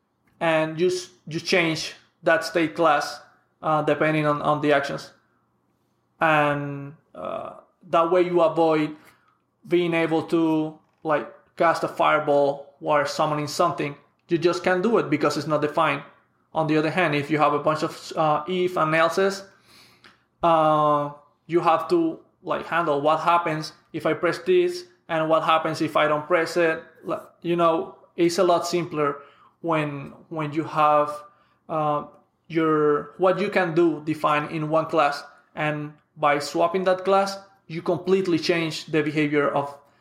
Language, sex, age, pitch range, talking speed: English, male, 20-39, 150-170 Hz, 155 wpm